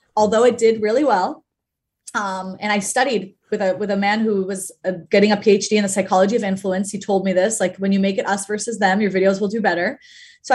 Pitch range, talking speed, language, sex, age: 190-230 Hz, 240 wpm, English, female, 20-39